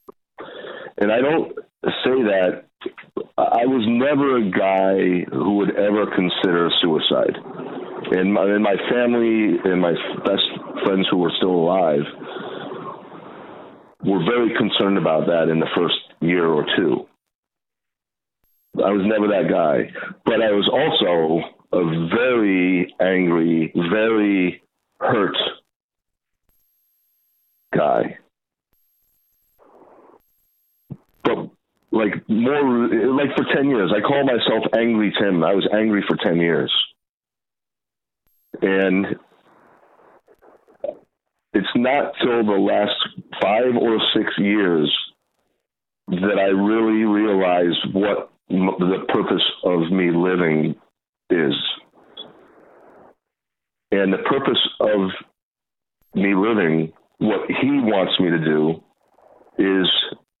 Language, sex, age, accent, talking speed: English, male, 50-69, American, 105 wpm